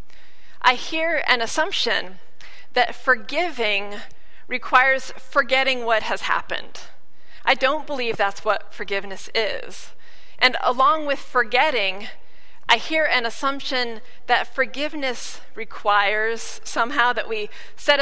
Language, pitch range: English, 215-270 Hz